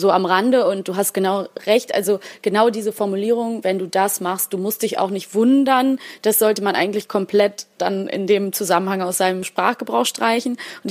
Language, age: German, 20-39